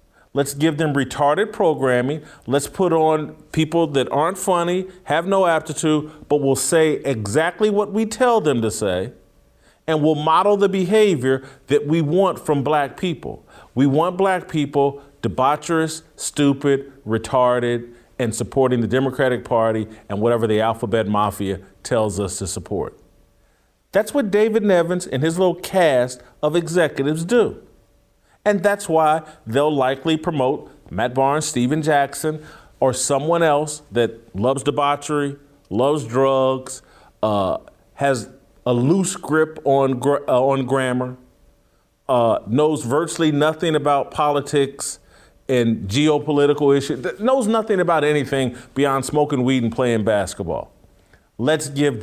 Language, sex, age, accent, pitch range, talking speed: English, male, 40-59, American, 125-160 Hz, 135 wpm